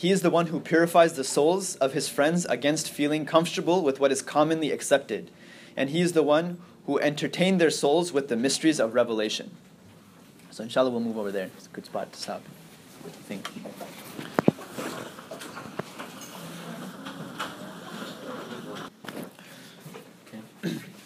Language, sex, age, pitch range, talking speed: English, male, 20-39, 130-170 Hz, 135 wpm